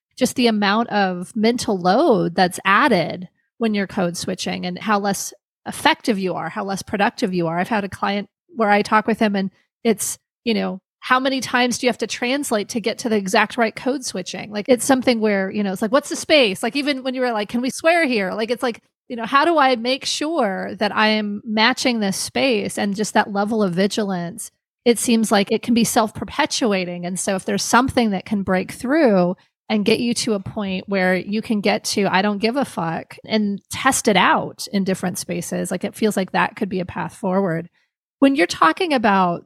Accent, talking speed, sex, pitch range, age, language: American, 225 wpm, female, 190-245 Hz, 30-49, English